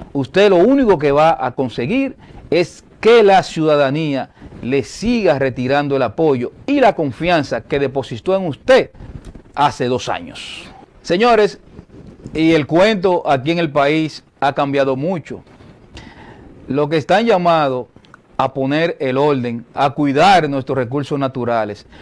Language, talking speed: Spanish, 135 wpm